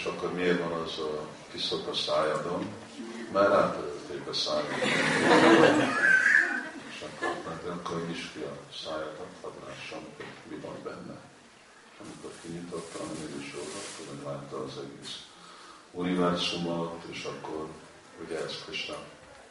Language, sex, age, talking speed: Hungarian, male, 50-69, 130 wpm